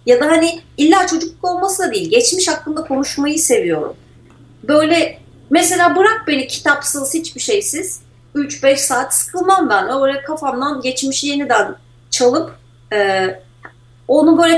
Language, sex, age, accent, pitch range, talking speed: Turkish, female, 40-59, native, 230-320 Hz, 130 wpm